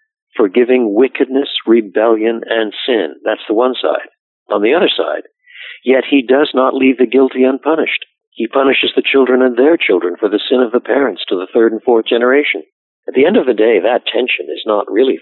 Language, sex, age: English, male, 50-69